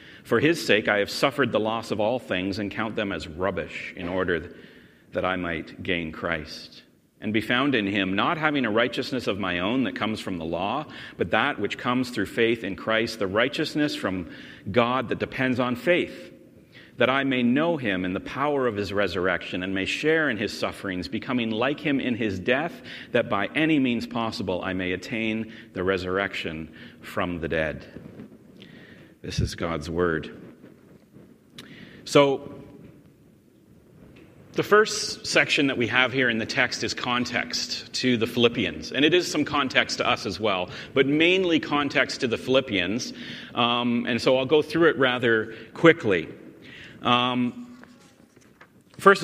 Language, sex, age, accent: English, male, 40-59, American